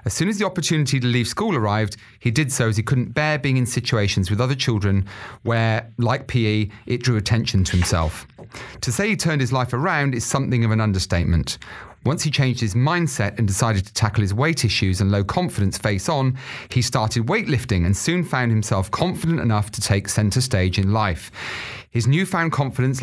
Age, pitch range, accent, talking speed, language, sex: 30-49, 105-135 Hz, British, 200 wpm, English, male